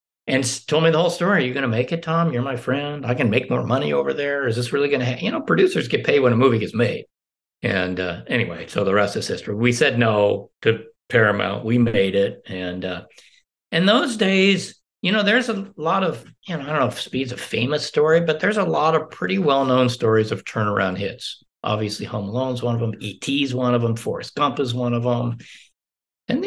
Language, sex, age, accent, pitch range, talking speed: English, male, 60-79, American, 110-155 Hz, 235 wpm